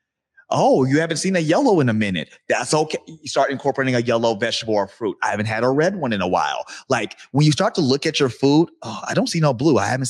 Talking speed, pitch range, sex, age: 265 wpm, 110-155 Hz, male, 30-49